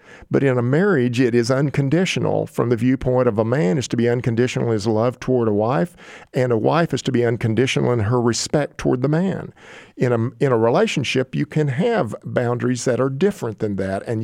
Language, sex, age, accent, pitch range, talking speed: English, male, 50-69, American, 105-150 Hz, 210 wpm